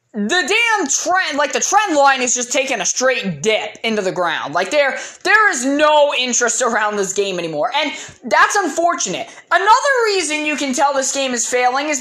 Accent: American